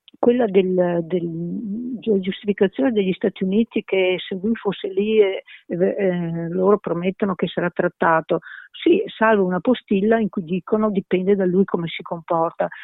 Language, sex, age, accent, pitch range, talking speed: Italian, female, 50-69, native, 170-210 Hz, 155 wpm